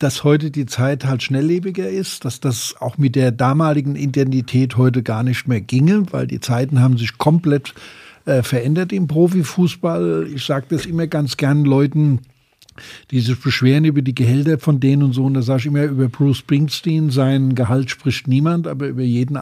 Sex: male